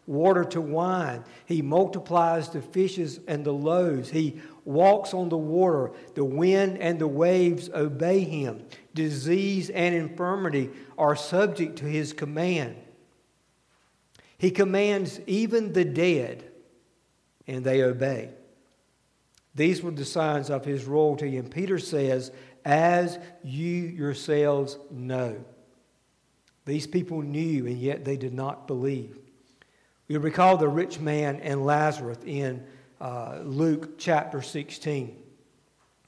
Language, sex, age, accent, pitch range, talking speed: English, male, 60-79, American, 145-180 Hz, 120 wpm